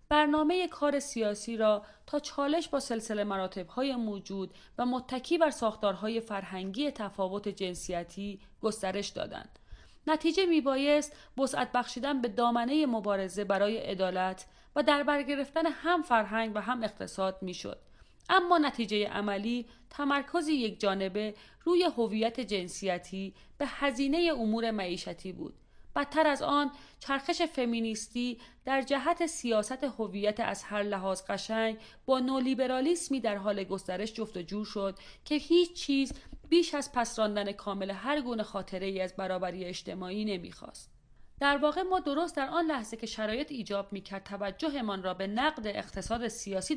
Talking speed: 130 wpm